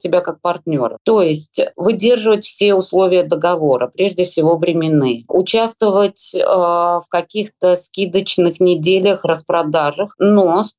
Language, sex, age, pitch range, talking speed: Russian, female, 20-39, 165-190 Hz, 110 wpm